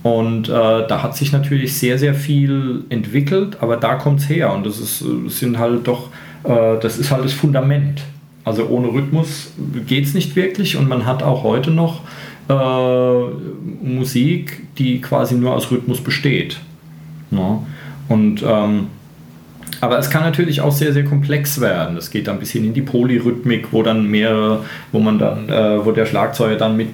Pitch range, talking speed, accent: 110-140 Hz, 180 wpm, German